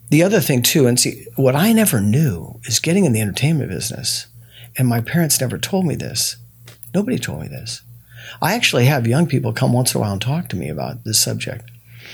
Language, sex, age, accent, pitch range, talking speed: English, male, 50-69, American, 115-140 Hz, 215 wpm